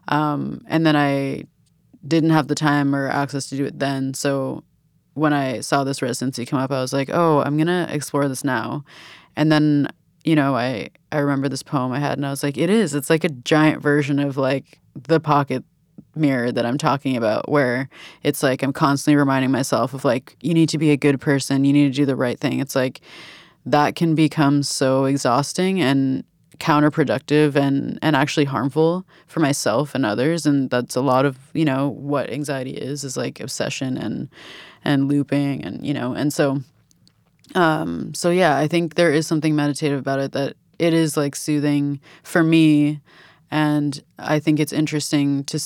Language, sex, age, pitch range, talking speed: French, female, 20-39, 140-155 Hz, 195 wpm